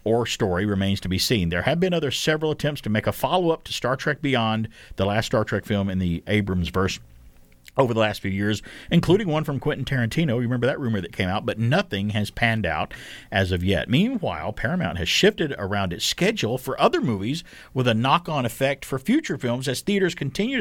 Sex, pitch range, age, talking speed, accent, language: male, 95-145 Hz, 50-69, 215 wpm, American, English